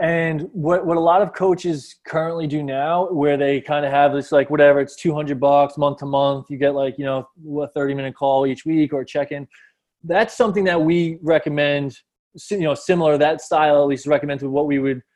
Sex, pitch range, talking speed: male, 140-165 Hz, 215 wpm